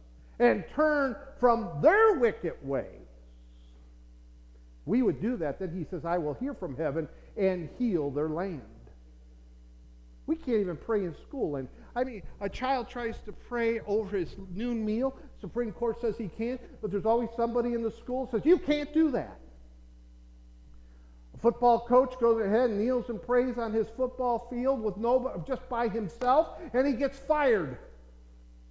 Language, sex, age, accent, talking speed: English, male, 50-69, American, 165 wpm